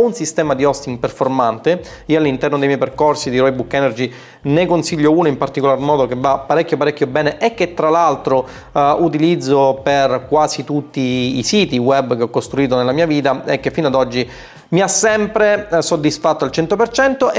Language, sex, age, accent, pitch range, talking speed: Italian, male, 30-49, native, 135-170 Hz, 185 wpm